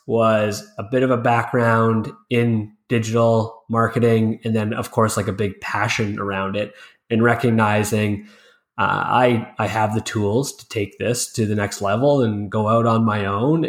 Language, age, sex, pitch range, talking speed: English, 20-39, male, 105-125 Hz, 175 wpm